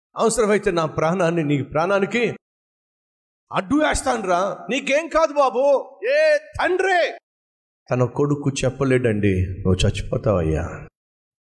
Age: 50-69